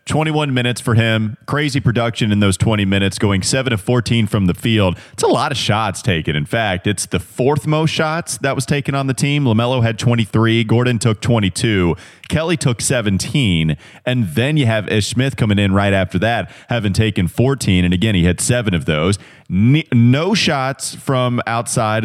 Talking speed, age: 190 wpm, 30-49